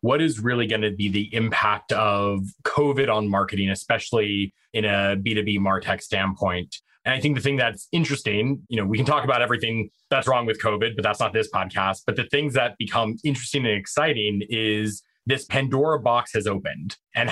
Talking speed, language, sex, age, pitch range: 195 wpm, English, male, 20-39, 105-130 Hz